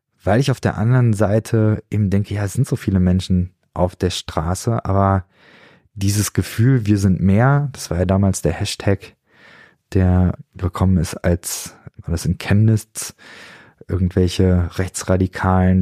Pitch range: 90-105 Hz